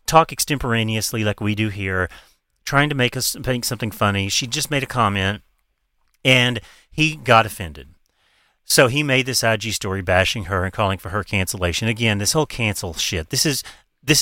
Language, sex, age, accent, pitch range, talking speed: English, male, 30-49, American, 100-130 Hz, 180 wpm